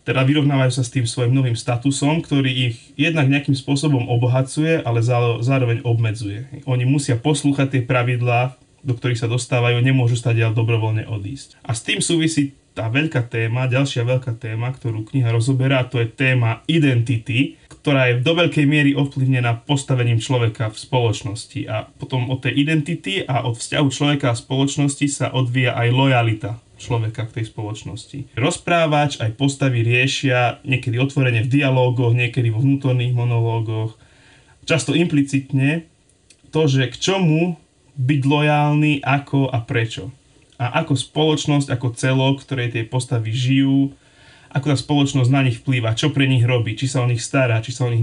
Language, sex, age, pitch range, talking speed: Slovak, male, 30-49, 120-140 Hz, 160 wpm